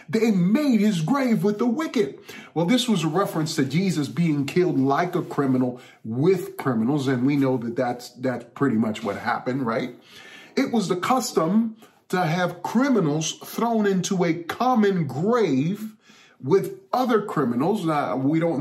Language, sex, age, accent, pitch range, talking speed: English, male, 30-49, American, 130-165 Hz, 160 wpm